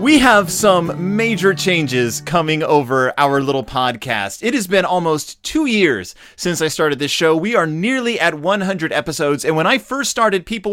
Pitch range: 140-200 Hz